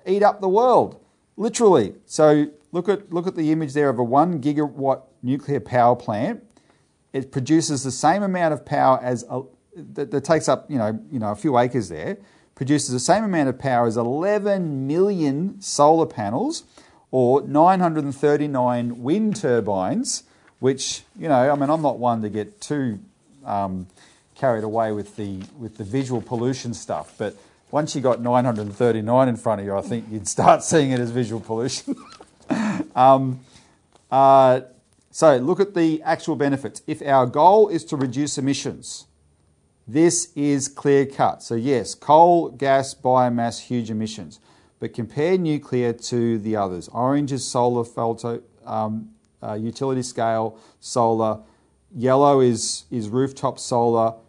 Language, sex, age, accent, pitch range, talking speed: English, male, 40-59, Australian, 115-145 Hz, 155 wpm